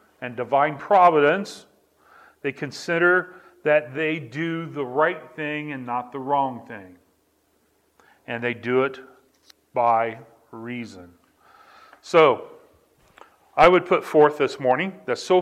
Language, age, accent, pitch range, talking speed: English, 40-59, American, 130-180 Hz, 120 wpm